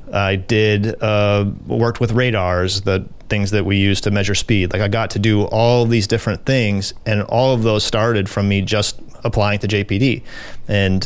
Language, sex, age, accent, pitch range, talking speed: English, male, 30-49, American, 100-115 Hz, 190 wpm